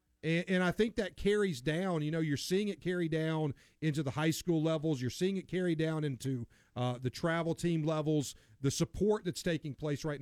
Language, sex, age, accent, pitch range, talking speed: English, male, 40-59, American, 135-170 Hz, 210 wpm